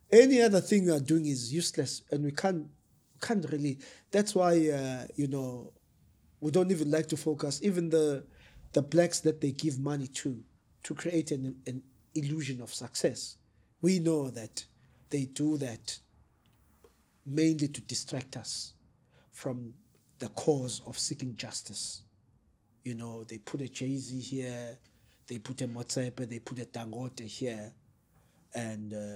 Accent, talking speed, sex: South African, 150 wpm, male